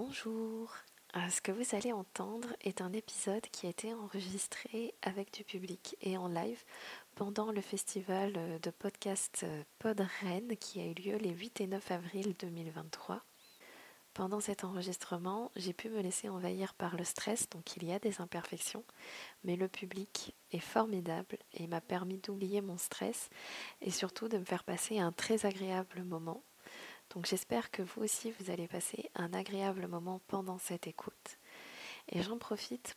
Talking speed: 165 wpm